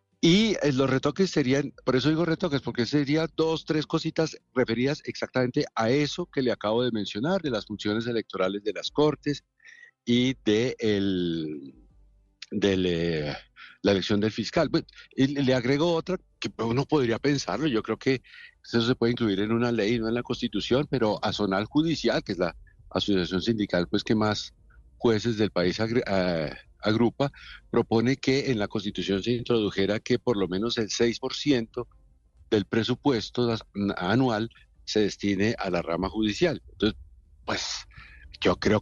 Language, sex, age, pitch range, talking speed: Spanish, male, 60-79, 100-135 Hz, 160 wpm